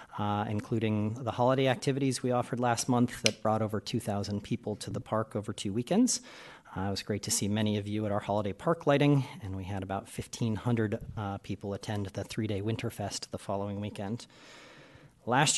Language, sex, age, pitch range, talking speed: English, male, 40-59, 100-125 Hz, 185 wpm